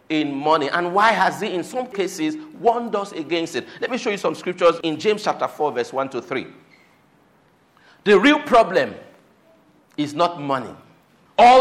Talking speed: 175 wpm